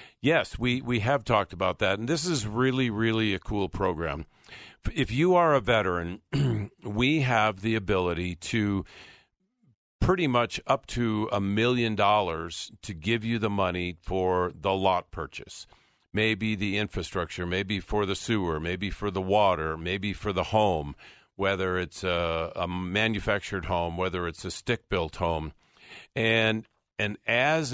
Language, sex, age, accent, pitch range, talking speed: English, male, 50-69, American, 95-115 Hz, 155 wpm